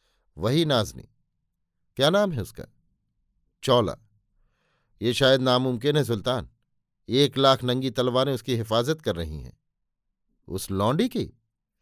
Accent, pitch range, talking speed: native, 110-135 Hz, 120 wpm